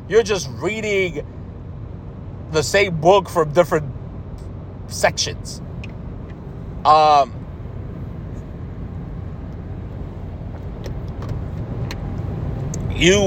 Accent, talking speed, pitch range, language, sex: American, 50 wpm, 125-175 Hz, English, male